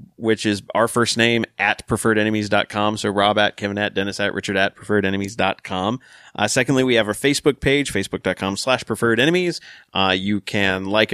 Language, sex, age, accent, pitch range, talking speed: English, male, 30-49, American, 100-130 Hz, 165 wpm